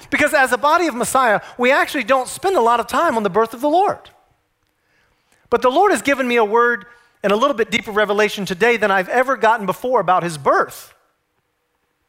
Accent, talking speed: American, 215 wpm